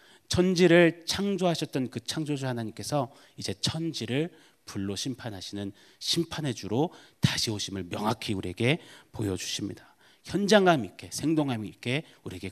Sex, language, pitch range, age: male, Korean, 110-160 Hz, 30-49